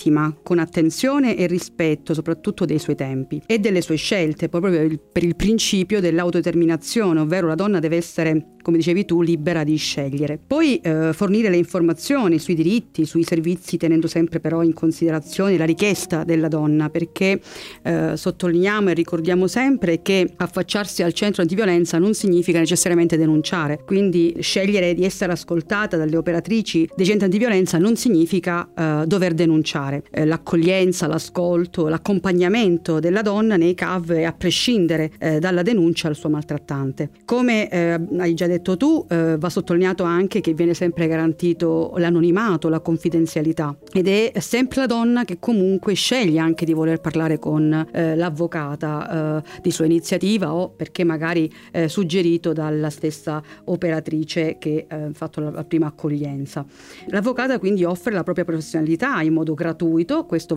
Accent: native